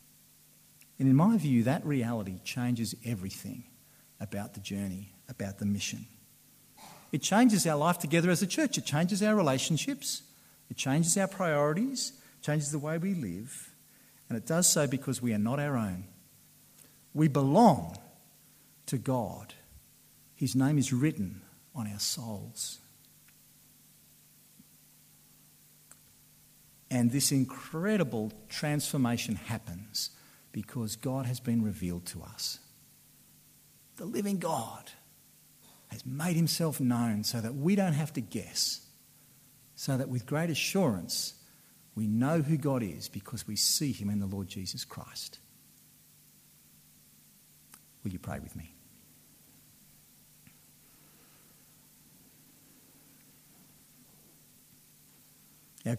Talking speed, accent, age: 115 wpm, Australian, 50-69